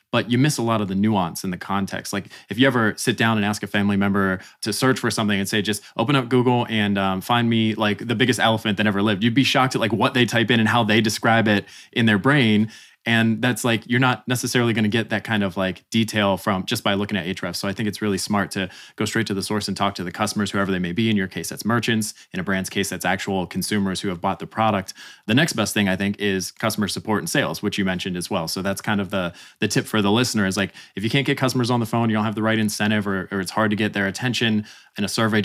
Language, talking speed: English, 290 wpm